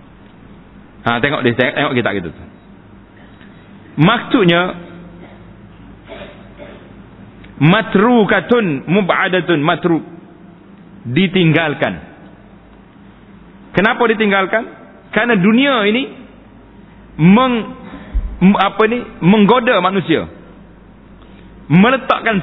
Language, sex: Malay, male